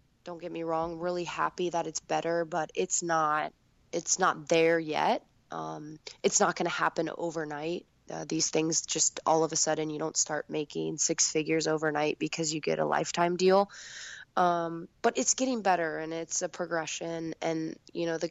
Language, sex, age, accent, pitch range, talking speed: English, female, 20-39, American, 155-175 Hz, 185 wpm